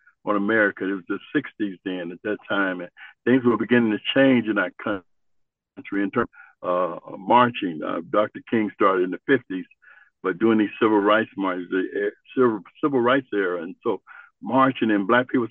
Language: English